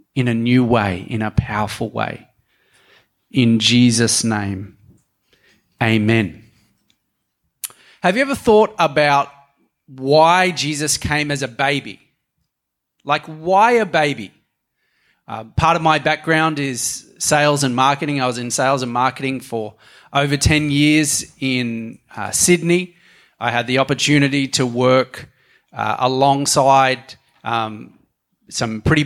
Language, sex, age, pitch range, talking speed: English, male, 30-49, 125-155 Hz, 125 wpm